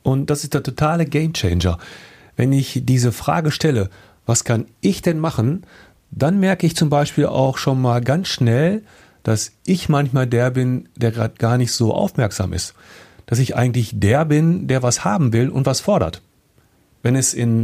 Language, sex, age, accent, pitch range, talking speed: German, male, 40-59, German, 105-145 Hz, 180 wpm